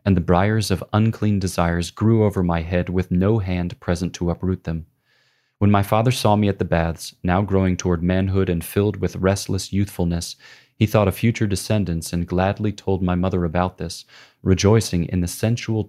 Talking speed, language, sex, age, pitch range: 190 wpm, English, male, 30-49, 85-105 Hz